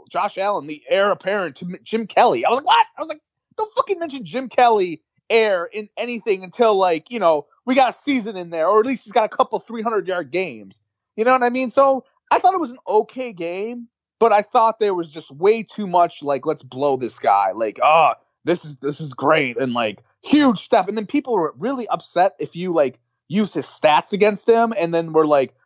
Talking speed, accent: 230 wpm, American